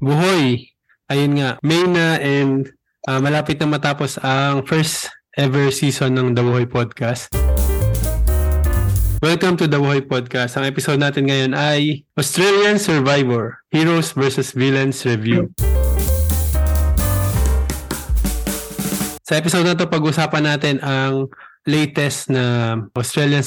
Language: Filipino